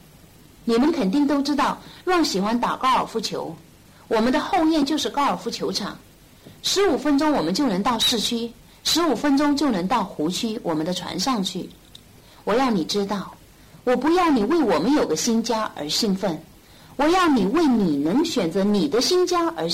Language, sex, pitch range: Chinese, female, 205-300 Hz